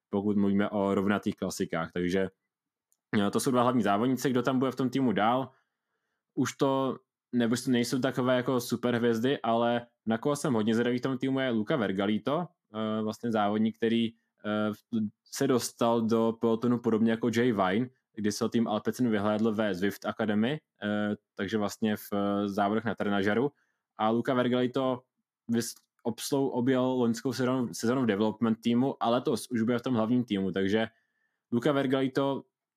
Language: Czech